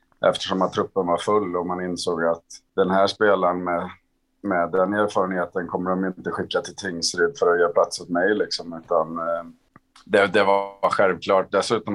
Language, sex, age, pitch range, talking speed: Swedish, male, 30-49, 90-100 Hz, 175 wpm